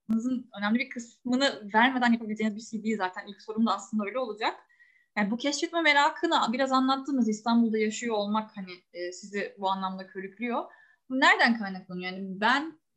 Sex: female